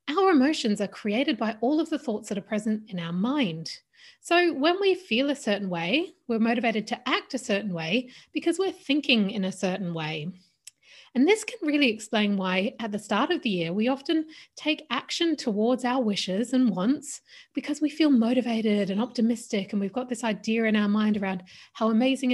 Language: English